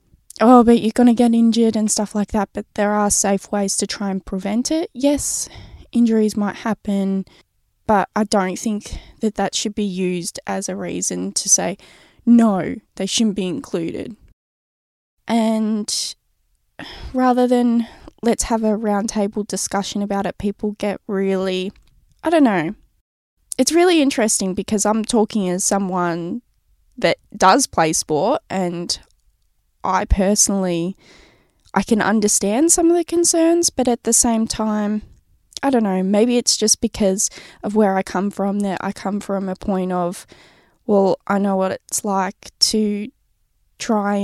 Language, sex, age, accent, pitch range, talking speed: English, female, 10-29, Australian, 195-225 Hz, 155 wpm